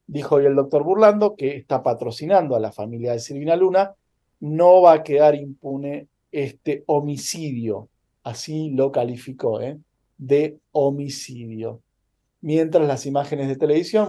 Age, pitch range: 40-59, 130-165 Hz